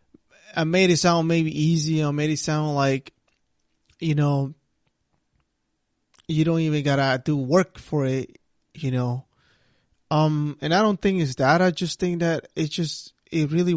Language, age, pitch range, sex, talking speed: English, 20-39, 140-175 Hz, male, 165 wpm